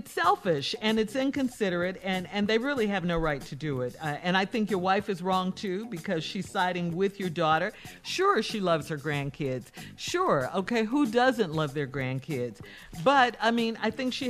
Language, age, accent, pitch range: English, 50-69, American, 160-235 Hz